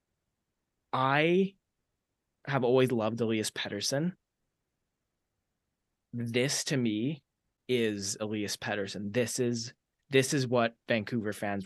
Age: 20-39